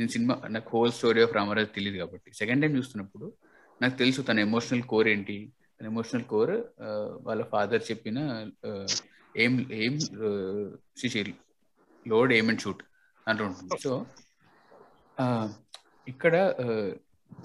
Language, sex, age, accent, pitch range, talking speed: Telugu, male, 30-49, native, 110-140 Hz, 75 wpm